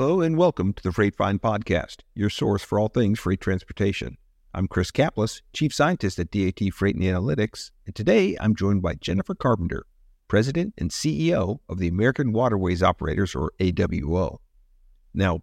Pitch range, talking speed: 90-115 Hz, 165 wpm